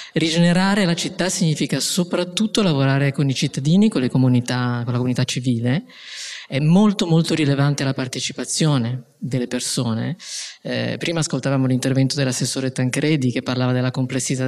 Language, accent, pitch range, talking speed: Italian, native, 130-160 Hz, 135 wpm